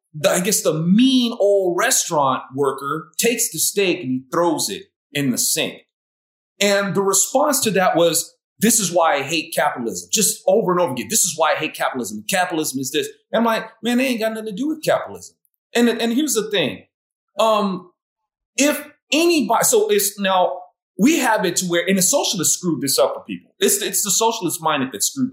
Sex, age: male, 30-49